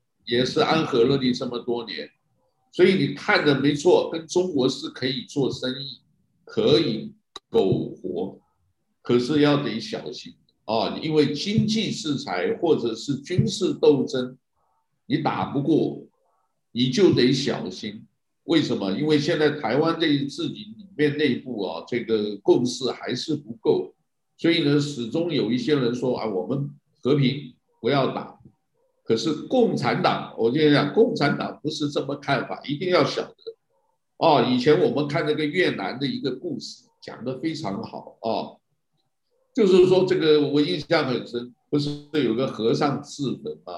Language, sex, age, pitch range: Chinese, male, 60-79, 135-220 Hz